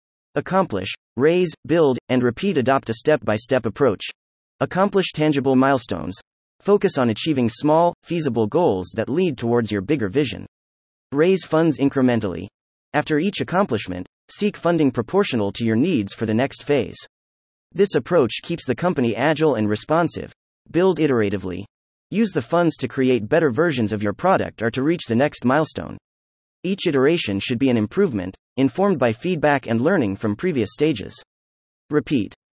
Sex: male